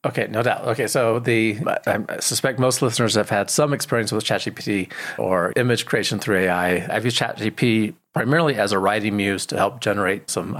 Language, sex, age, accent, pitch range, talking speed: English, male, 40-59, American, 105-140 Hz, 185 wpm